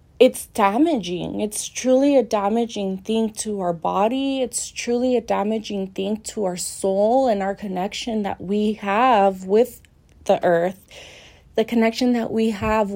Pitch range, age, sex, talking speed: 195-235 Hz, 20-39, female, 150 wpm